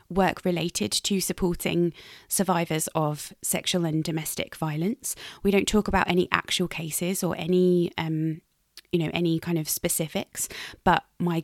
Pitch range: 155-185 Hz